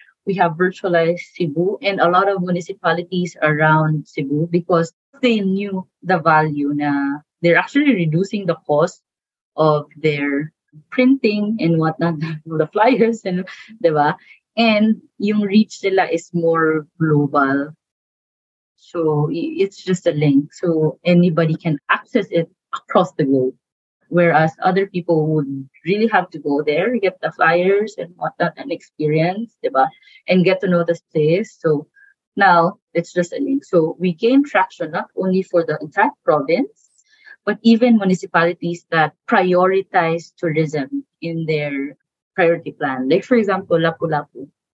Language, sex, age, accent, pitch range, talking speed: Filipino, female, 20-39, native, 155-195 Hz, 135 wpm